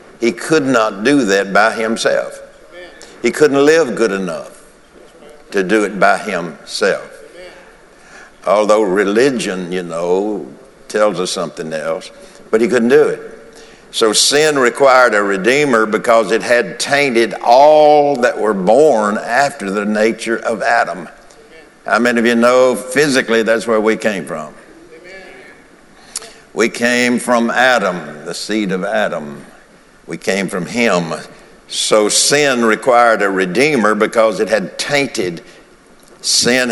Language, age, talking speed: English, 60-79, 130 wpm